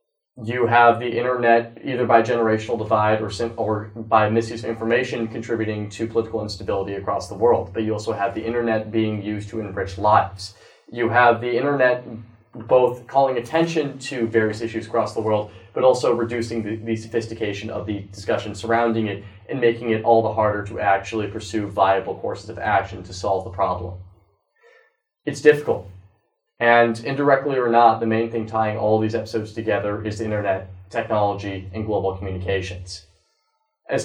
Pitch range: 105-120 Hz